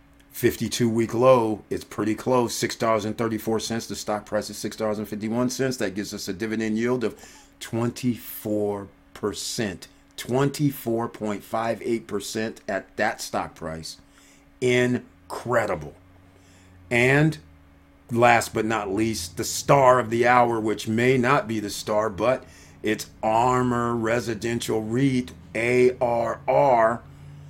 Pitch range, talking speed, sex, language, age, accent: 105-125 Hz, 105 wpm, male, English, 50-69, American